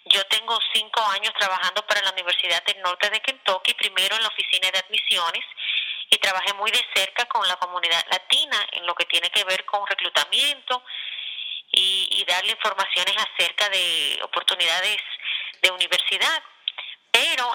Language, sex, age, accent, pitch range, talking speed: Spanish, female, 30-49, American, 190-245 Hz, 155 wpm